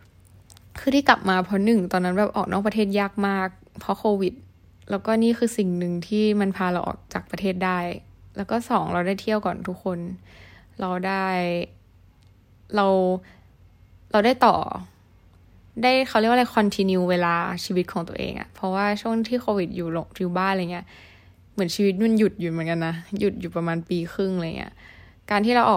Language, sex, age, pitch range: Thai, female, 10-29, 170-200 Hz